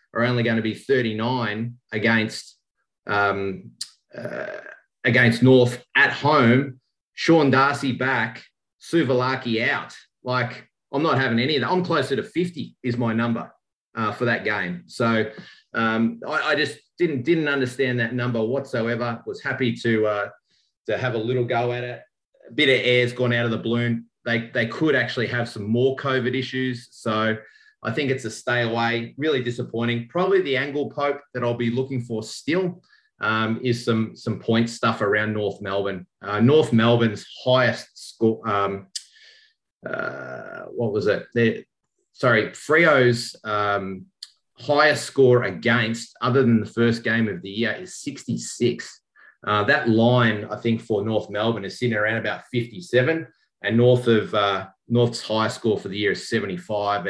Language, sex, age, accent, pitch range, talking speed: English, male, 30-49, Australian, 110-130 Hz, 165 wpm